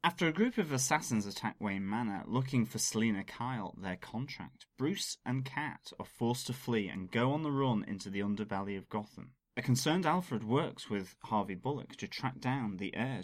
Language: English